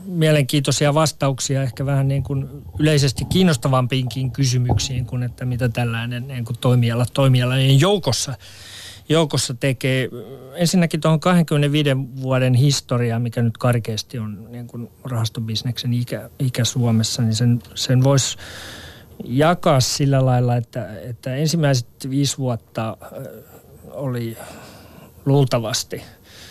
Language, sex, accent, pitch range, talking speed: Finnish, male, native, 120-140 Hz, 105 wpm